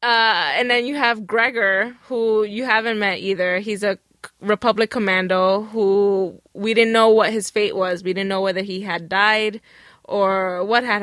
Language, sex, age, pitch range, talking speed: English, female, 20-39, 195-230 Hz, 180 wpm